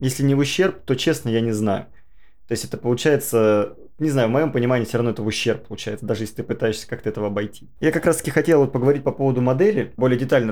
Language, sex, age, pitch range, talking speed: Russian, male, 20-39, 110-140 Hz, 240 wpm